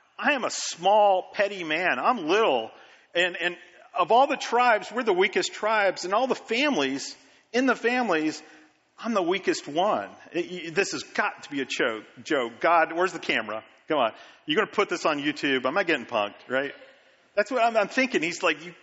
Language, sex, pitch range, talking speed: English, male, 150-250 Hz, 205 wpm